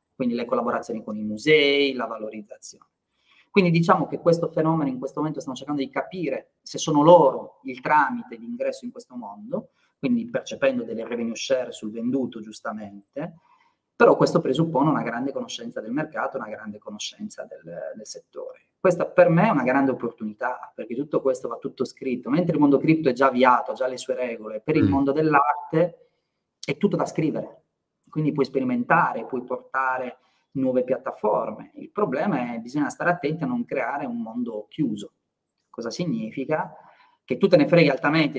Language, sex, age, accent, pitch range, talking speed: Italian, male, 30-49, native, 125-180 Hz, 175 wpm